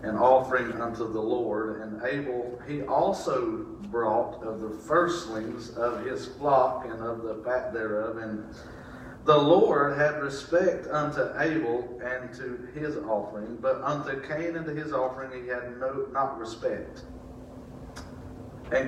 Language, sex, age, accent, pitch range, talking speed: English, male, 40-59, American, 120-155 Hz, 145 wpm